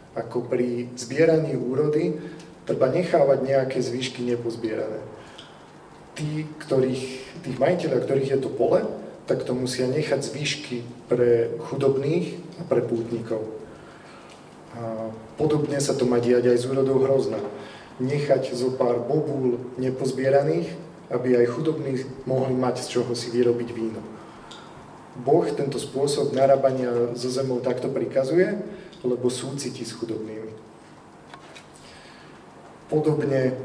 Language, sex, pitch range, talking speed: Slovak, male, 120-150 Hz, 110 wpm